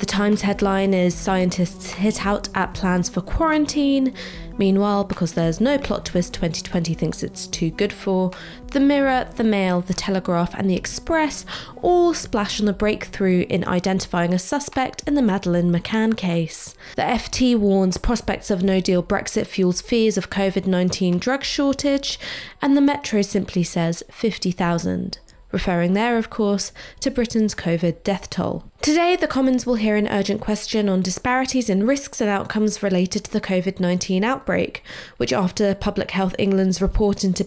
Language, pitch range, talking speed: English, 180-235 Hz, 160 wpm